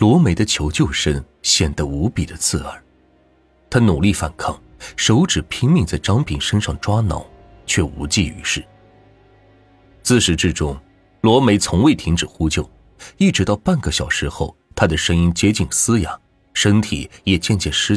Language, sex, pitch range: Chinese, male, 80-115 Hz